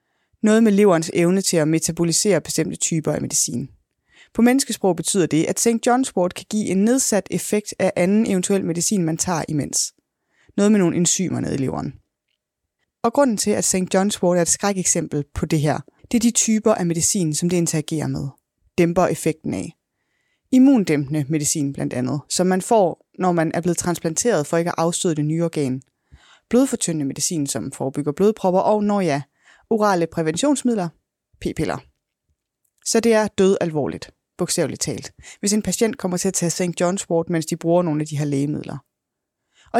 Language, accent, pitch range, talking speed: Danish, native, 155-205 Hz, 180 wpm